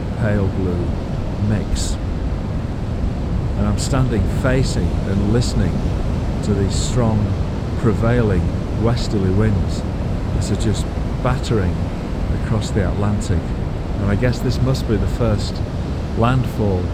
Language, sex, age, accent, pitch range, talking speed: English, male, 50-69, British, 90-110 Hz, 110 wpm